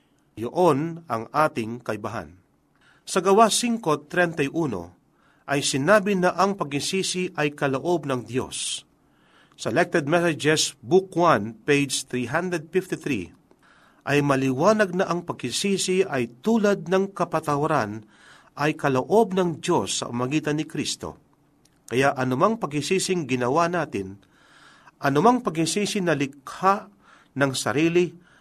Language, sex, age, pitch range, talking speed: Filipino, male, 40-59, 130-180 Hz, 105 wpm